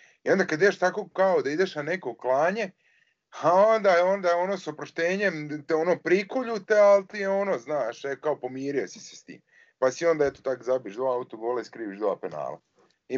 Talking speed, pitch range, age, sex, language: 205 wpm, 125-175 Hz, 30-49, male, Croatian